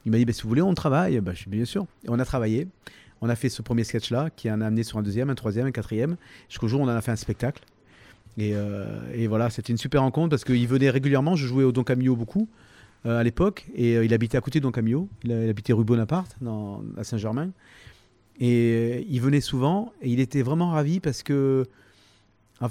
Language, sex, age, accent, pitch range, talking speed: French, male, 30-49, French, 115-140 Hz, 250 wpm